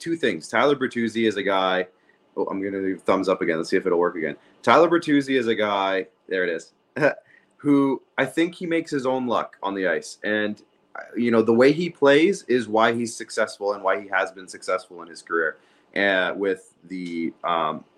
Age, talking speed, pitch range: 30-49, 210 wpm, 105-135 Hz